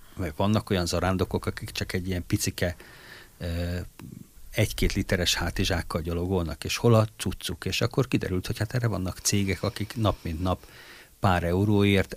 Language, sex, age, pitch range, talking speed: Hungarian, male, 50-69, 90-110 Hz, 150 wpm